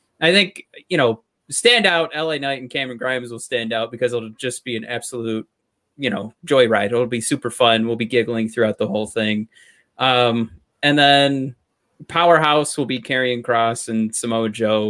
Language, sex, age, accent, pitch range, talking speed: English, male, 20-39, American, 115-140 Hz, 185 wpm